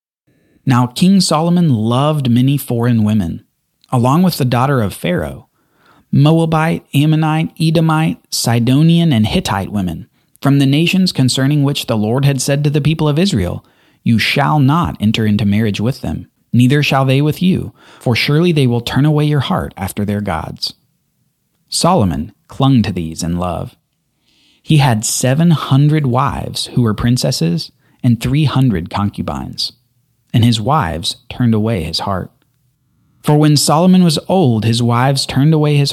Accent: American